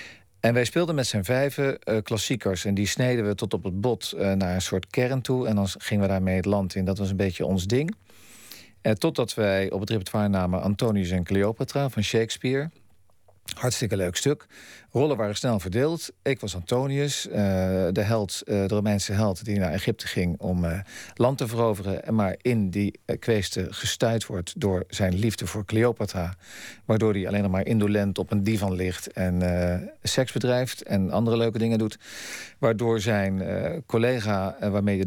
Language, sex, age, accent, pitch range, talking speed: Dutch, male, 40-59, Dutch, 95-115 Hz, 190 wpm